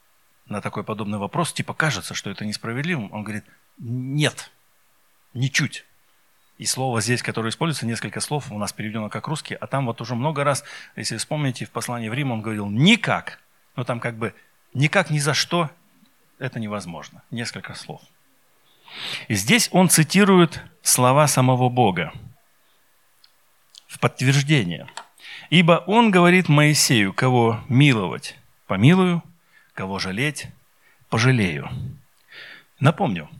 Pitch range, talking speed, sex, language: 110-160 Hz, 130 wpm, male, Russian